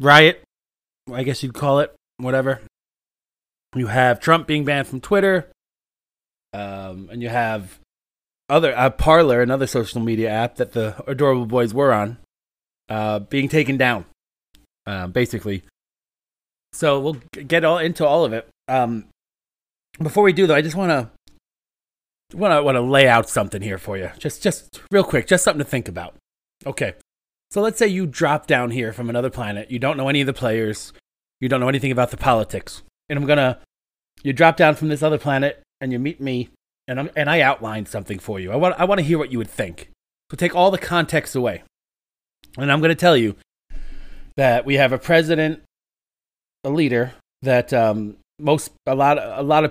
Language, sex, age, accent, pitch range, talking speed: English, male, 30-49, American, 115-150 Hz, 190 wpm